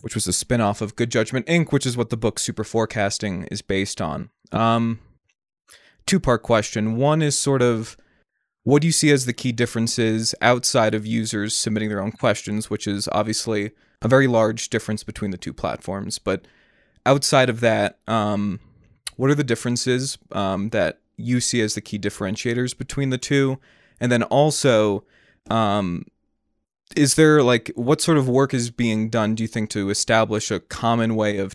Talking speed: 180 wpm